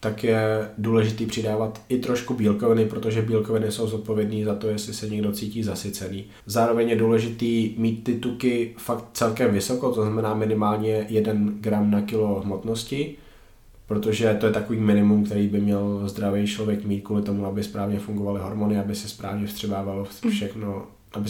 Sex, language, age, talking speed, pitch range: male, Slovak, 20-39, 165 wpm, 105-115 Hz